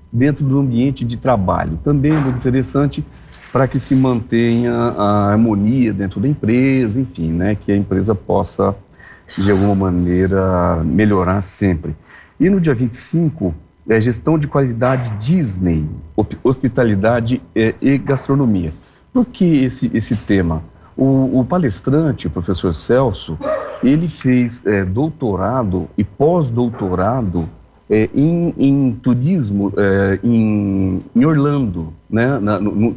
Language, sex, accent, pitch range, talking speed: Portuguese, male, Brazilian, 95-135 Hz, 125 wpm